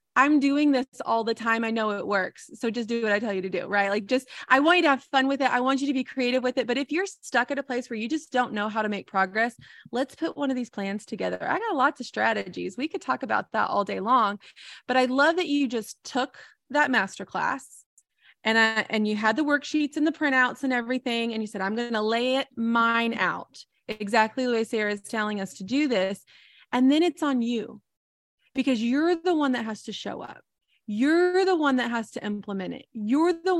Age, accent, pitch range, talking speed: 20-39, American, 220-285 Hz, 250 wpm